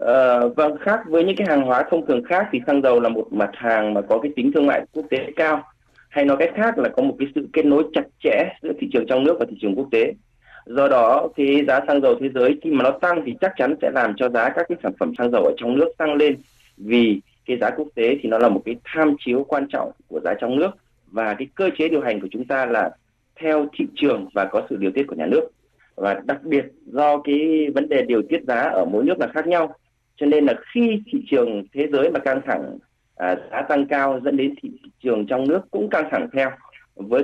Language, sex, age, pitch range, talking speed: Vietnamese, male, 20-39, 125-165 Hz, 260 wpm